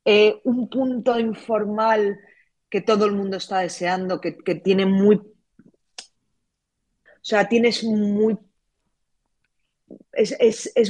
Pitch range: 160-220 Hz